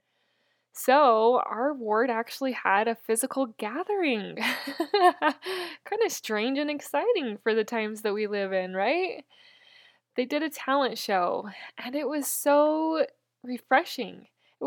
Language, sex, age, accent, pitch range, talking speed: English, female, 20-39, American, 215-285 Hz, 130 wpm